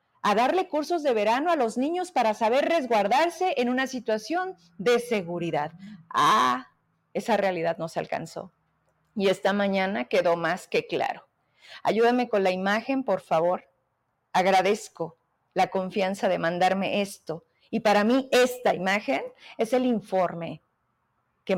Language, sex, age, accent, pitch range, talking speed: Spanish, female, 40-59, Mexican, 185-235 Hz, 140 wpm